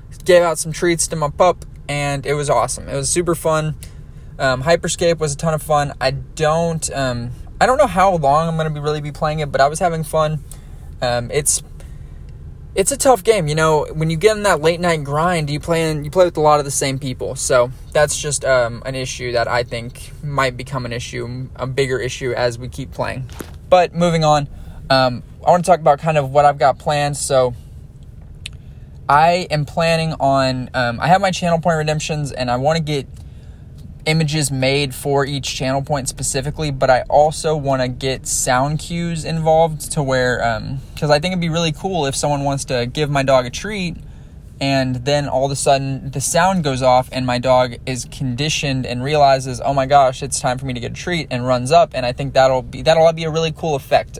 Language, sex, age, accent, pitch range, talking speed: English, male, 20-39, American, 130-160 Hz, 220 wpm